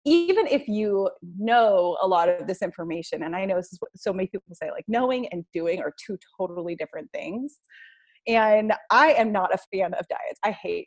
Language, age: English, 30-49